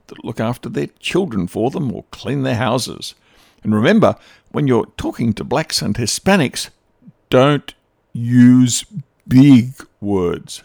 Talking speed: 135 wpm